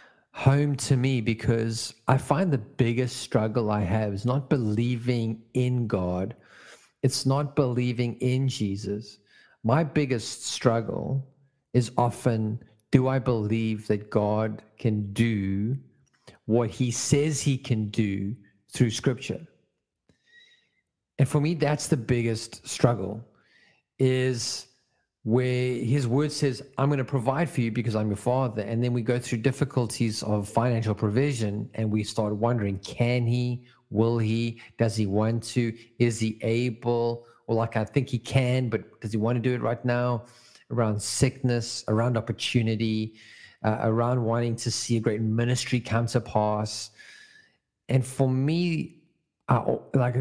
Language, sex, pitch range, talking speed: English, male, 110-130 Hz, 145 wpm